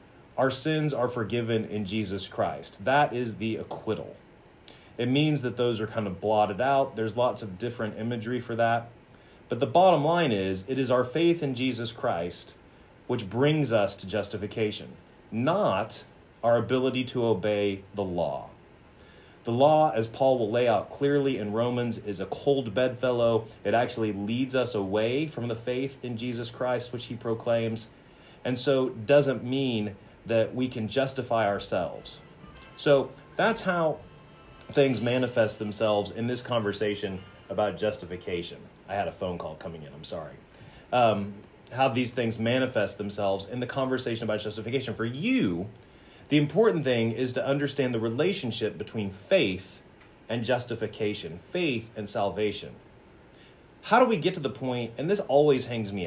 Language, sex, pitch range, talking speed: English, male, 110-135 Hz, 160 wpm